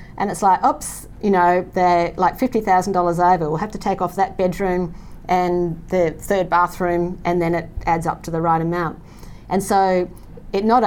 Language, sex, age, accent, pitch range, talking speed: English, female, 40-59, Australian, 165-190 Hz, 190 wpm